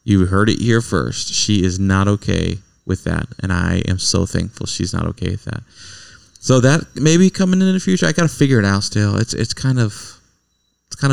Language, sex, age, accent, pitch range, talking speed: English, male, 20-39, American, 95-115 Hz, 225 wpm